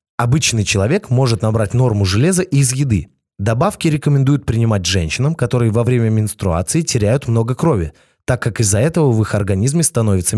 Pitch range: 105-140 Hz